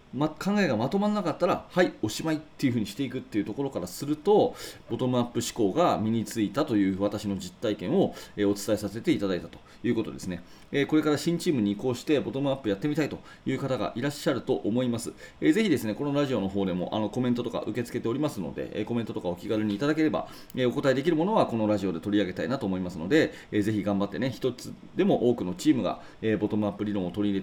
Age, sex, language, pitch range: 30-49, male, Japanese, 100-140 Hz